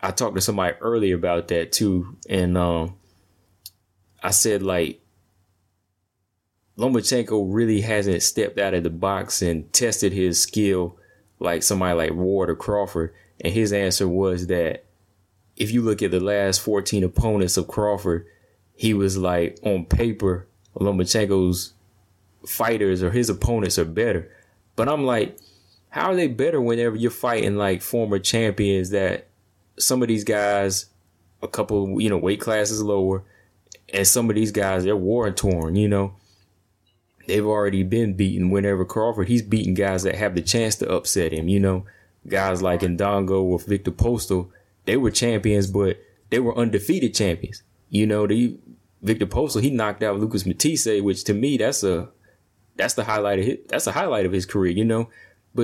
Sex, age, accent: male, 20-39, American